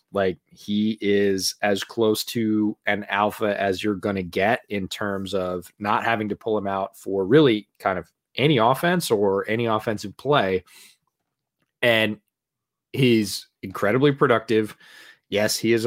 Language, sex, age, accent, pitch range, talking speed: English, male, 20-39, American, 100-120 Hz, 150 wpm